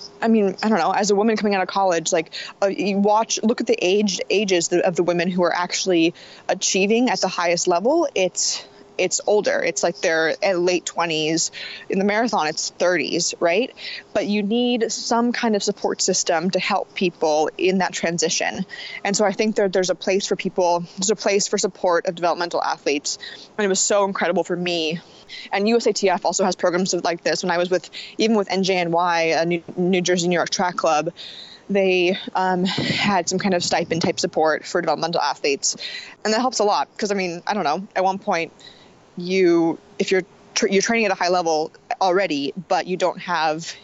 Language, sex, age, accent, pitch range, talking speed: English, female, 20-39, American, 170-205 Hz, 205 wpm